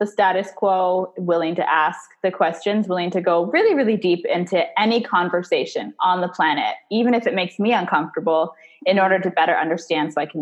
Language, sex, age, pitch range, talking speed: English, female, 20-39, 180-230 Hz, 195 wpm